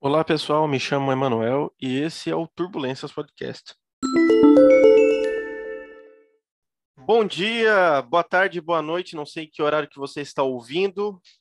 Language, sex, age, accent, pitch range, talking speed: Portuguese, male, 20-39, Brazilian, 130-165 Hz, 130 wpm